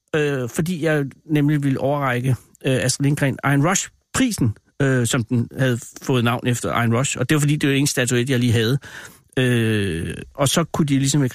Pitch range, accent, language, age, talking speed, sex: 120-145 Hz, native, Danish, 60-79, 205 wpm, male